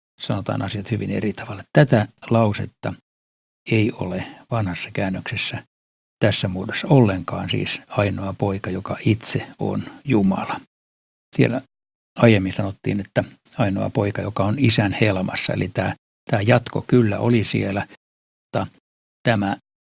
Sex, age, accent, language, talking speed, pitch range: male, 60-79, native, Finnish, 120 wpm, 95-115 Hz